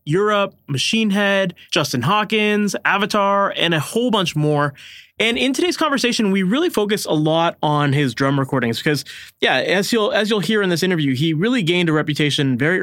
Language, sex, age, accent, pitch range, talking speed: English, male, 20-39, American, 150-205 Hz, 185 wpm